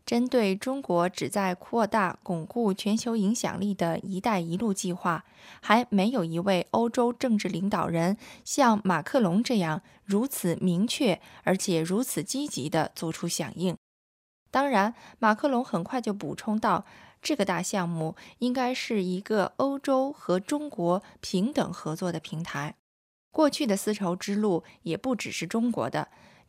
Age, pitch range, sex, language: 20-39, 175-240 Hz, female, Chinese